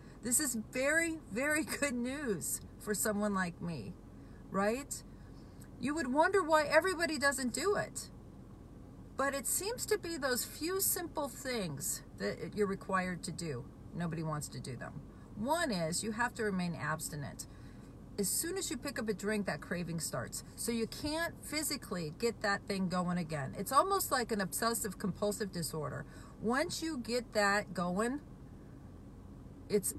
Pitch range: 175-240 Hz